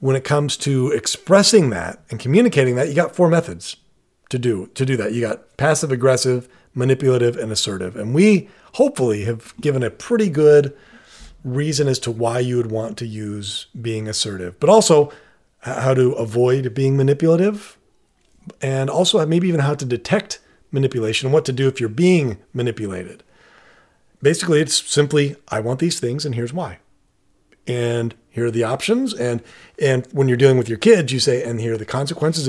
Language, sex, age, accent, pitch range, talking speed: English, male, 40-59, American, 120-160 Hz, 180 wpm